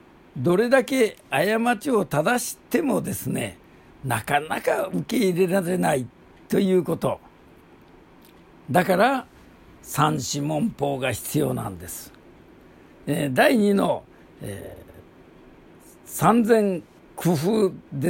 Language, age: Japanese, 60-79